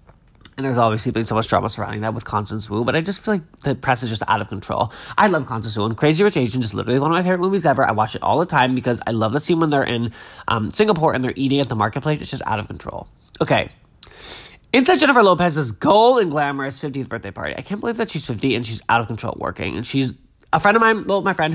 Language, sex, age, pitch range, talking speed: English, male, 20-39, 115-145 Hz, 275 wpm